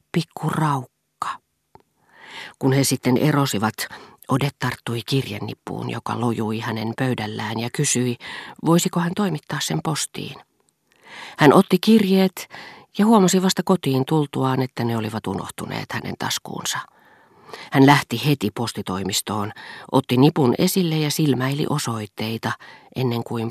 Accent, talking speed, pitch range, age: native, 115 wpm, 115-155 Hz, 40-59